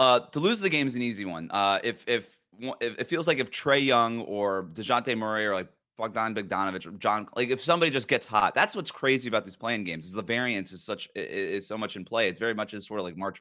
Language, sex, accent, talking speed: English, male, American, 265 wpm